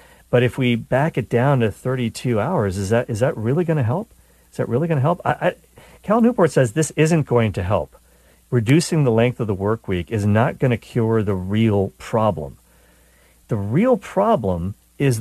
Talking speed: 205 wpm